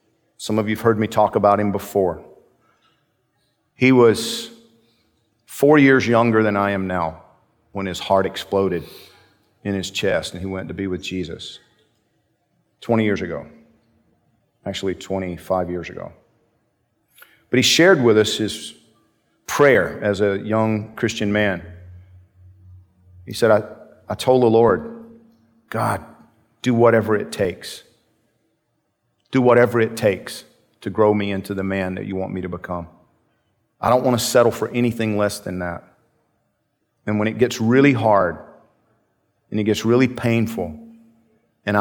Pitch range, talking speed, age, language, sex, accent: 95-115 Hz, 145 wpm, 50-69, English, male, American